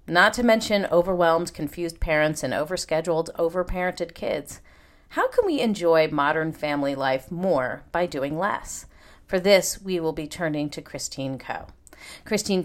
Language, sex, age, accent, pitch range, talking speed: English, female, 40-59, American, 155-220 Hz, 145 wpm